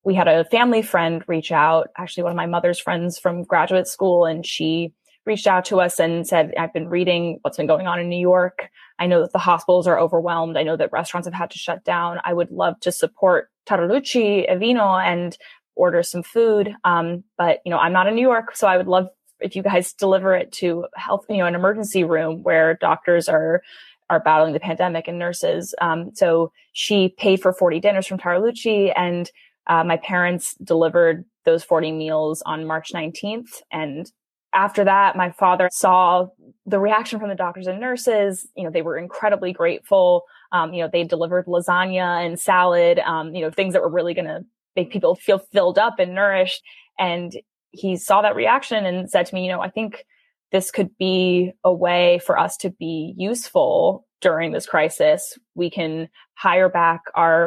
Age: 20-39